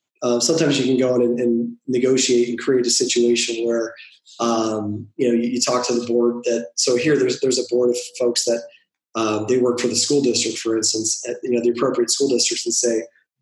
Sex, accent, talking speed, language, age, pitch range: male, American, 230 wpm, English, 20-39, 120-135 Hz